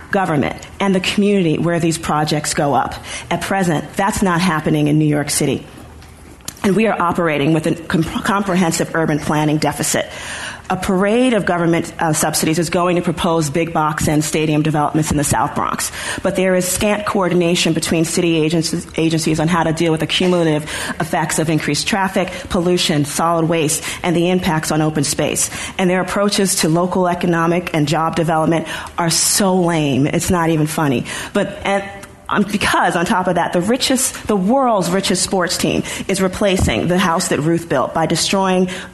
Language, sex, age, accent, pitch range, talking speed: English, female, 40-59, American, 160-190 Hz, 180 wpm